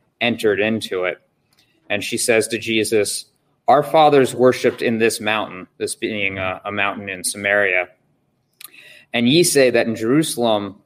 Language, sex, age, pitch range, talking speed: English, male, 30-49, 110-125 Hz, 150 wpm